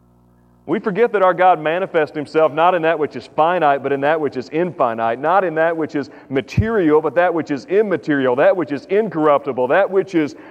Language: English